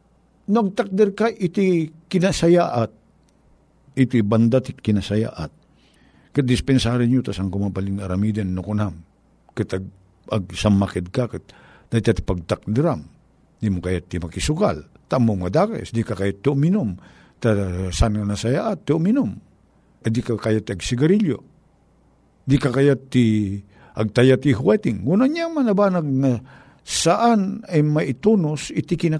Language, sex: Filipino, male